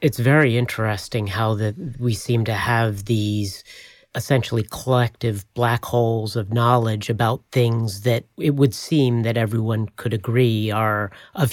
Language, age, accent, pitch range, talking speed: English, 40-59, American, 110-125 Hz, 140 wpm